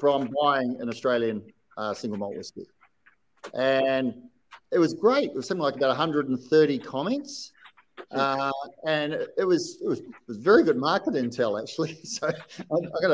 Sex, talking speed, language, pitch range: male, 165 wpm, English, 125-180 Hz